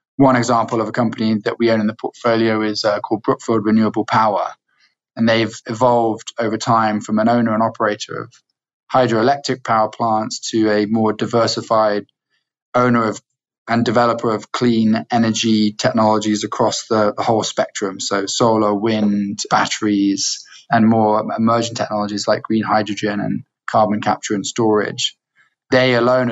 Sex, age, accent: male, 20-39, British